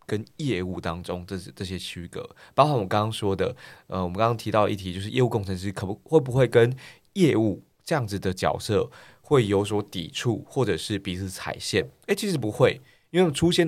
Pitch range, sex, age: 95-125 Hz, male, 20-39